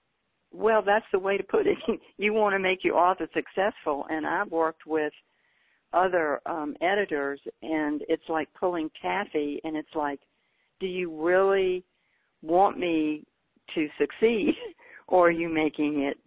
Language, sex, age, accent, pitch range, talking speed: English, female, 60-79, American, 150-190 Hz, 150 wpm